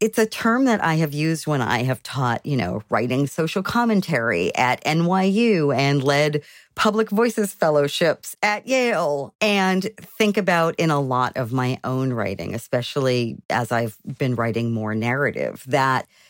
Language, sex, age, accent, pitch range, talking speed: English, female, 40-59, American, 125-200 Hz, 160 wpm